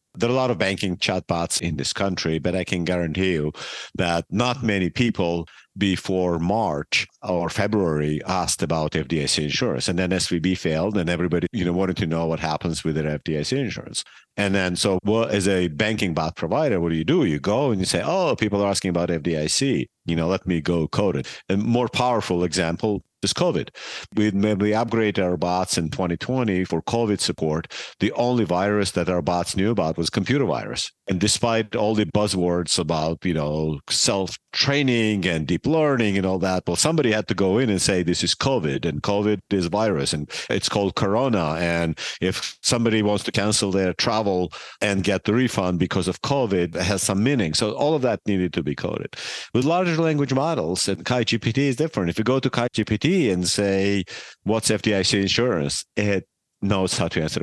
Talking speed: 195 wpm